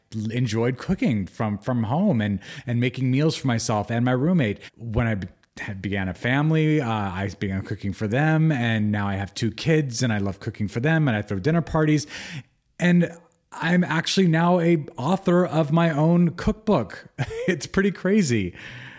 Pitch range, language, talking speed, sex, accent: 110-150 Hz, English, 175 wpm, male, American